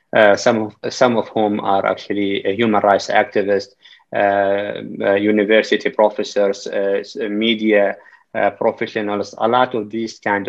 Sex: male